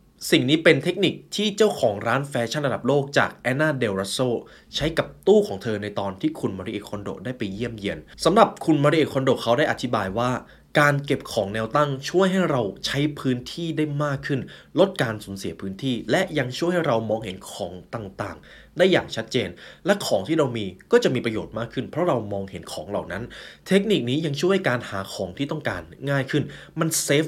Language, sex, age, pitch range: Thai, male, 20-39, 110-150 Hz